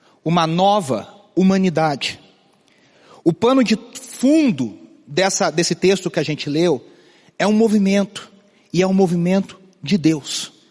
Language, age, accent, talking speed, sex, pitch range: Portuguese, 40-59, Brazilian, 125 wpm, male, 175-215 Hz